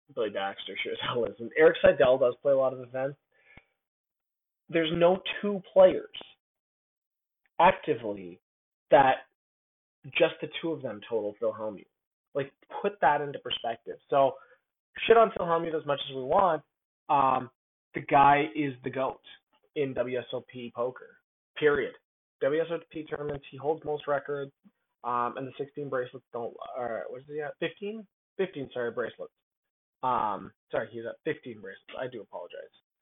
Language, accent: English, American